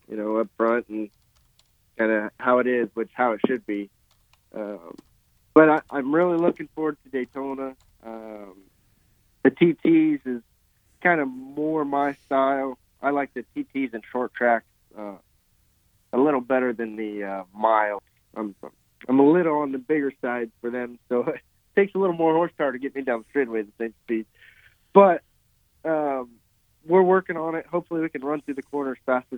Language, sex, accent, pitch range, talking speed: English, male, American, 110-140 Hz, 180 wpm